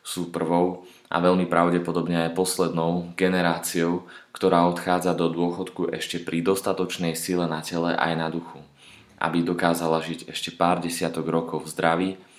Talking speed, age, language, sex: 140 wpm, 20-39, Slovak, male